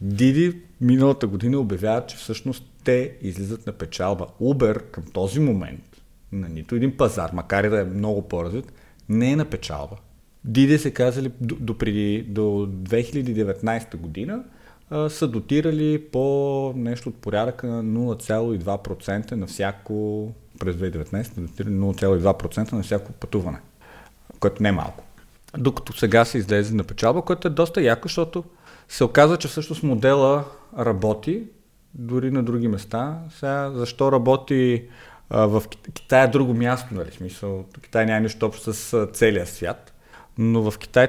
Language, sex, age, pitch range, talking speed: Bulgarian, male, 40-59, 105-130 Hz, 145 wpm